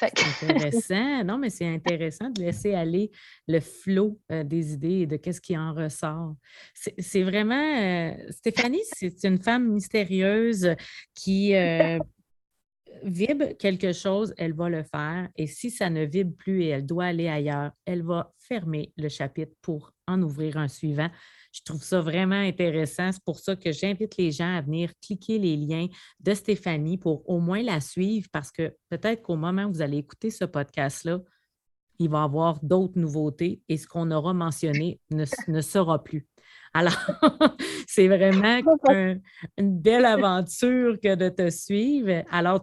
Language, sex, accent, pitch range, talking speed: French, female, Canadian, 155-195 Hz, 170 wpm